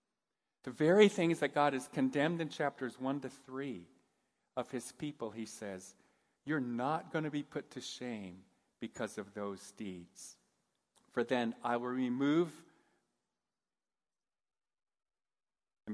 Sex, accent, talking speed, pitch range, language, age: male, American, 130 wpm, 100-145 Hz, English, 40-59